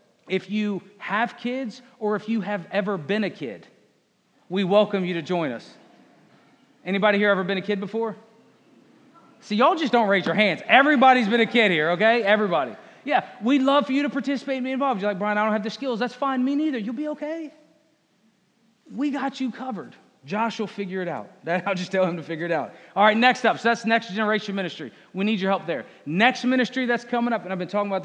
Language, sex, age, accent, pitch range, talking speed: English, male, 30-49, American, 195-245 Hz, 225 wpm